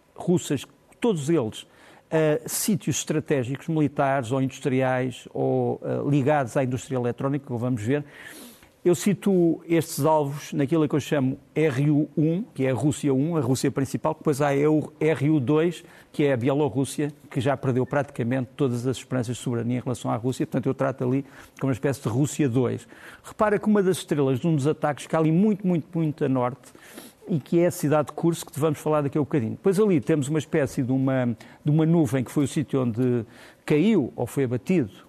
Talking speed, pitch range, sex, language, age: 195 wpm, 135-165 Hz, male, Portuguese, 50-69